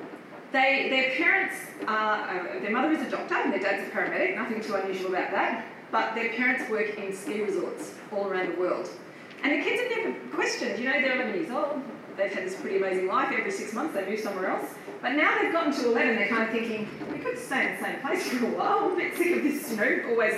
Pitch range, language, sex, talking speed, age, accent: 195-270 Hz, English, female, 245 wpm, 30-49, Australian